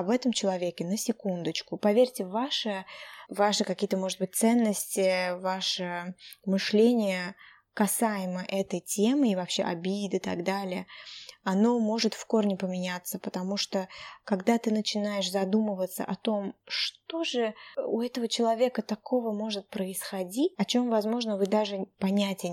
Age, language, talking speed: 20-39, Russian, 135 wpm